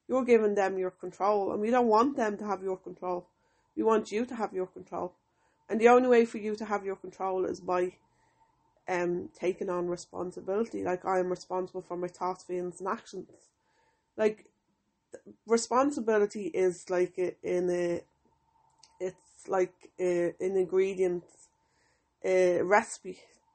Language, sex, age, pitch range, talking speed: English, female, 20-39, 185-210 Hz, 160 wpm